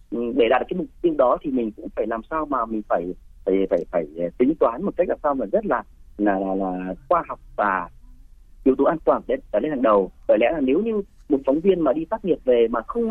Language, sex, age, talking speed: Vietnamese, male, 30-49, 265 wpm